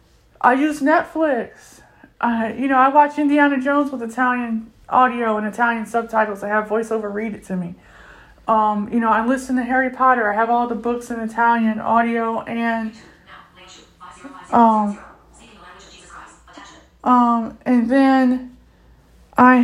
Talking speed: 140 wpm